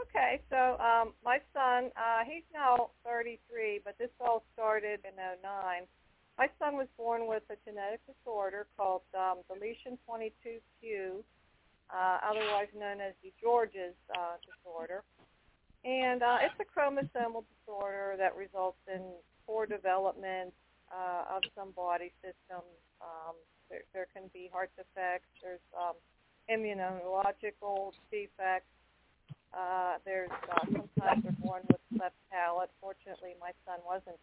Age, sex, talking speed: 50-69, female, 130 wpm